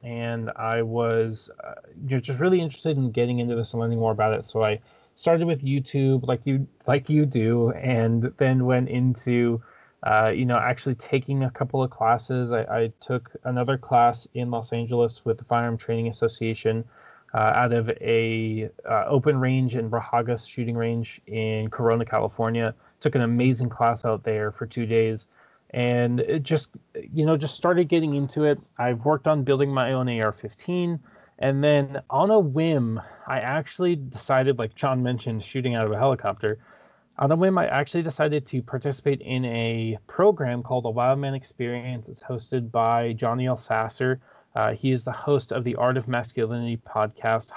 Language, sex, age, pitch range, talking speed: English, male, 20-39, 115-135 Hz, 180 wpm